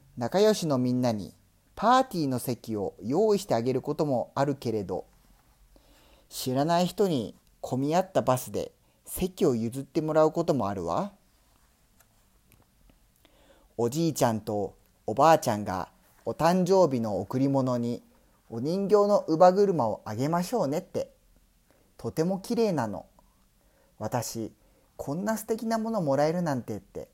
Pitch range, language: 110-170 Hz, Spanish